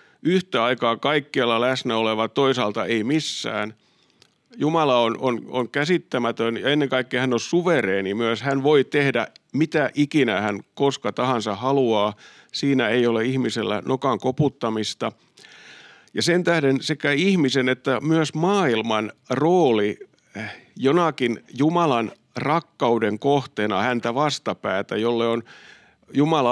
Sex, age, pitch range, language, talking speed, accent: male, 50-69, 115-145 Hz, Finnish, 120 wpm, native